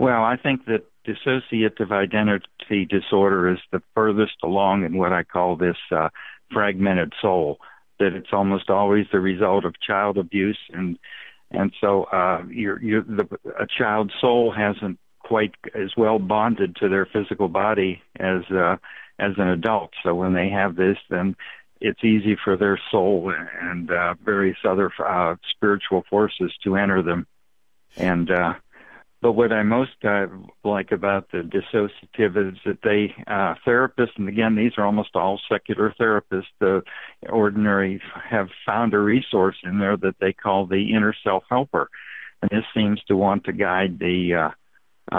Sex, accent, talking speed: male, American, 160 wpm